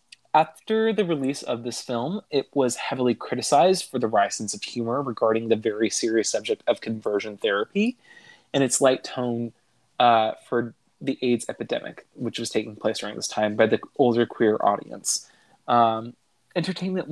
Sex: male